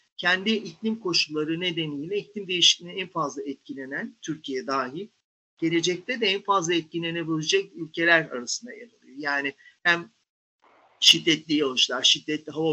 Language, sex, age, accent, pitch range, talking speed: Turkish, male, 50-69, native, 155-205 Hz, 125 wpm